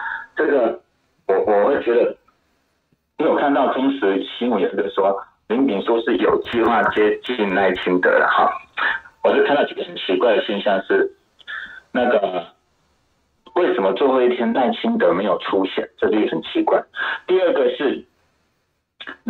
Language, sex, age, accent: Chinese, male, 60-79, native